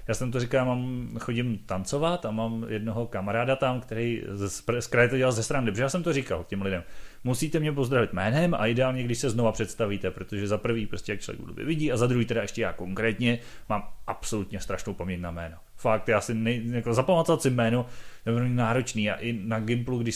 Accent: native